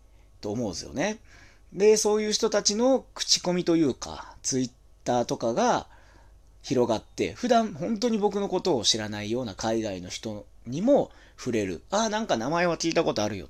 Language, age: Japanese, 30-49